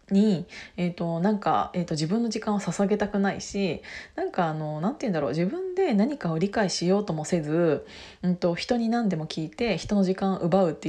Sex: female